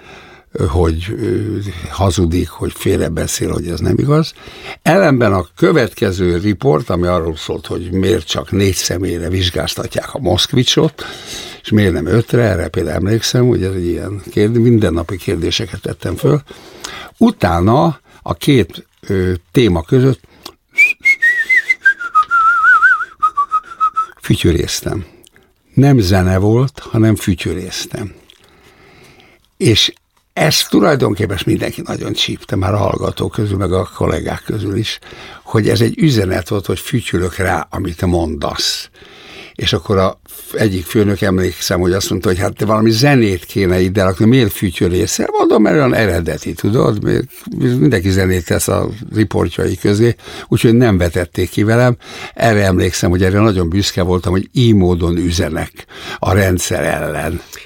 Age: 60-79